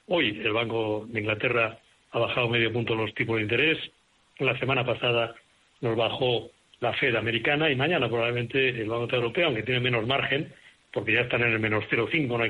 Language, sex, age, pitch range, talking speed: Spanish, male, 60-79, 120-145 Hz, 190 wpm